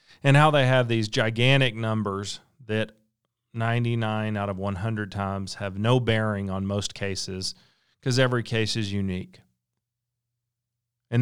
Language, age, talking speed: English, 40-59, 135 wpm